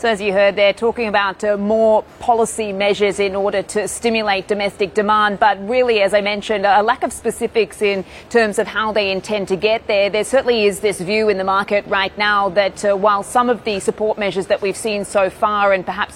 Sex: female